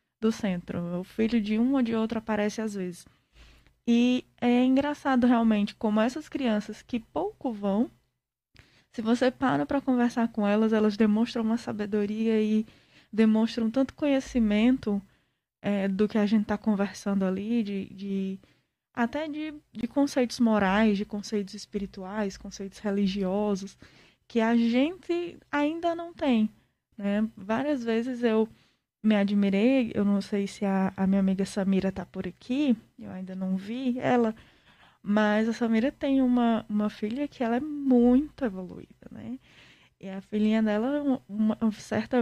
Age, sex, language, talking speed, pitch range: 10-29, female, Portuguese, 150 wpm, 205-245 Hz